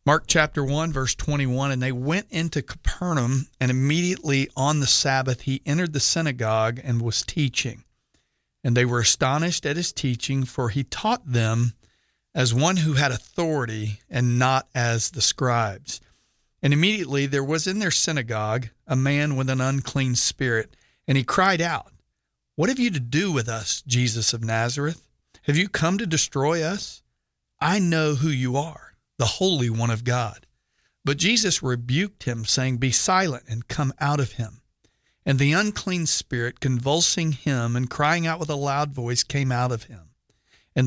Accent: American